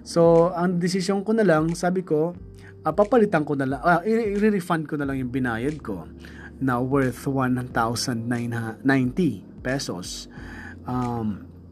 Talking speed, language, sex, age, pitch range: 125 wpm, Filipino, male, 20-39, 120-160 Hz